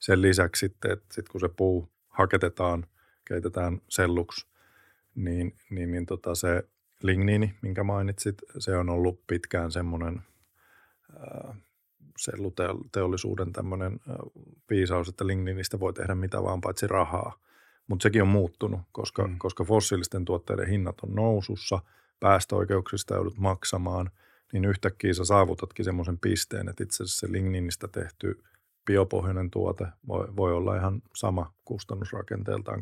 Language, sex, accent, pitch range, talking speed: Finnish, male, native, 90-105 Hz, 110 wpm